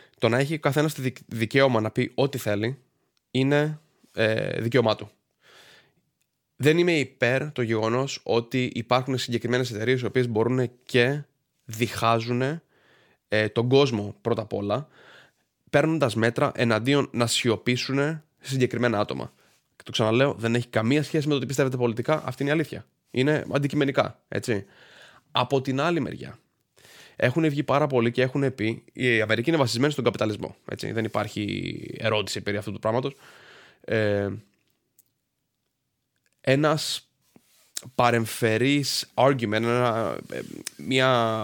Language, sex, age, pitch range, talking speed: Greek, male, 20-39, 115-140 Hz, 125 wpm